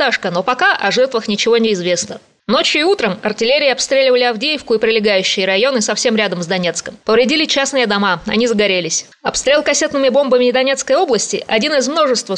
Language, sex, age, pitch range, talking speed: Russian, female, 20-39, 205-265 Hz, 160 wpm